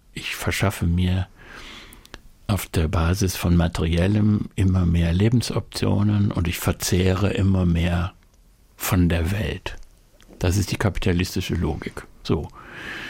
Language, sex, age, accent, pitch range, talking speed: German, male, 60-79, German, 90-110 Hz, 115 wpm